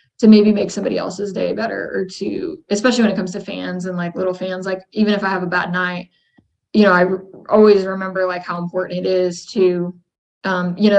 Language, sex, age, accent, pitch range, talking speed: English, female, 20-39, American, 185-210 Hz, 225 wpm